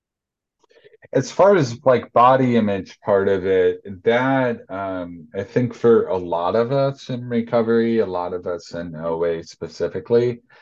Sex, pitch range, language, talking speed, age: male, 85-115 Hz, English, 155 wpm, 30-49